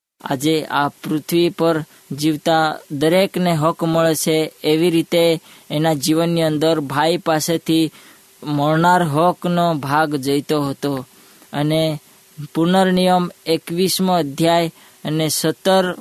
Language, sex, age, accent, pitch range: Hindi, female, 20-39, native, 155-175 Hz